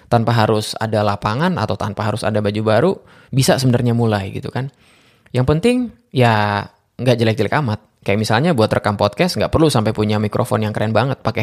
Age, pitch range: 20-39, 105-135 Hz